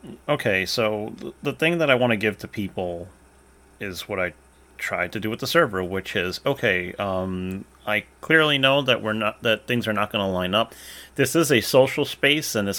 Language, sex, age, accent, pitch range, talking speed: English, male, 30-49, American, 95-120 Hz, 210 wpm